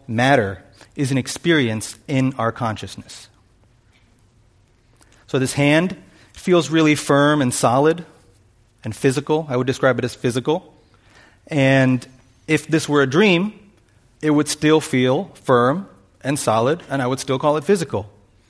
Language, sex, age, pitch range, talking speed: English, male, 30-49, 115-150 Hz, 140 wpm